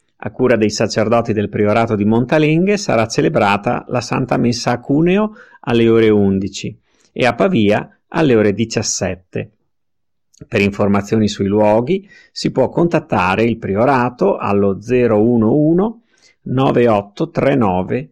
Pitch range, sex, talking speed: 105-135 Hz, male, 120 wpm